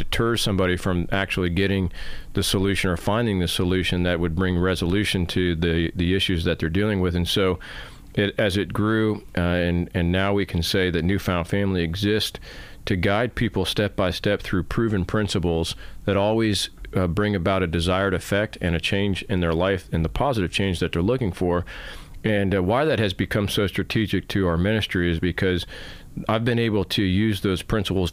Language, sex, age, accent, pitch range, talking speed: English, male, 40-59, American, 90-105 Hz, 195 wpm